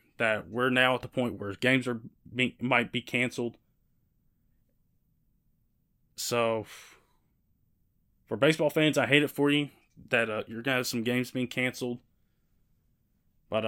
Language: English